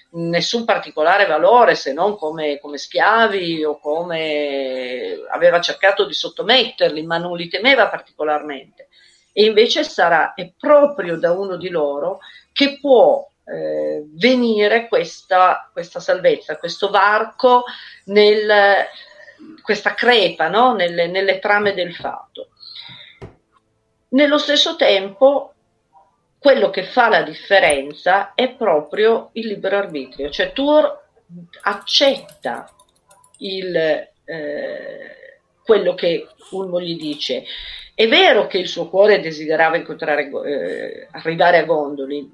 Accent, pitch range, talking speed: native, 170-275 Hz, 115 wpm